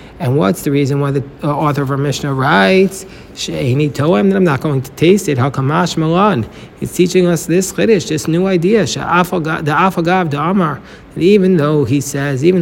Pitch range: 140-175 Hz